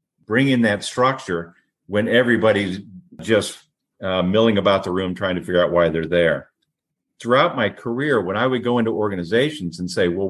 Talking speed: 180 wpm